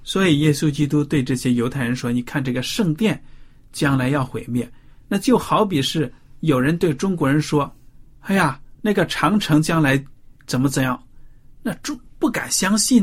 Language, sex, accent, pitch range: Chinese, male, native, 125-160 Hz